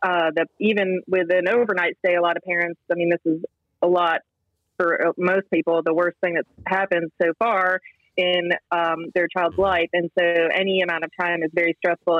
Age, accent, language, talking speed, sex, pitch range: 30-49, American, English, 200 wpm, female, 160-180 Hz